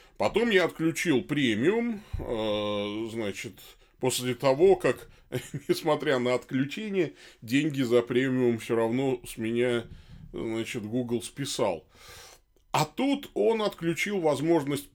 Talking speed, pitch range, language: 105 wpm, 115-170 Hz, Russian